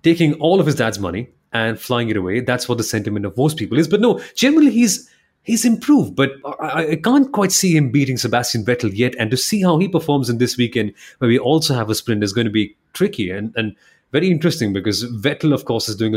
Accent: Indian